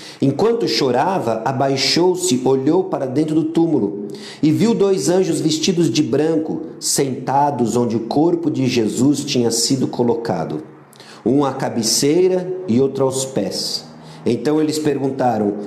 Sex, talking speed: male, 130 wpm